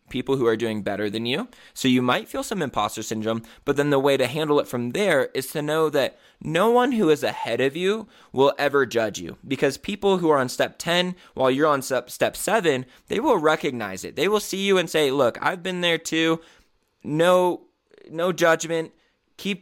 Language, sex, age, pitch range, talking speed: English, male, 20-39, 125-165 Hz, 215 wpm